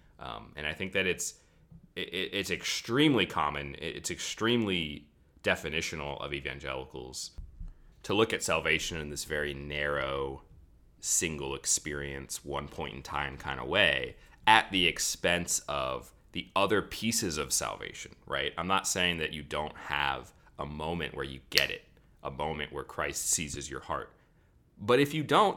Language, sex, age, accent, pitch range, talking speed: English, male, 30-49, American, 75-100 Hz, 155 wpm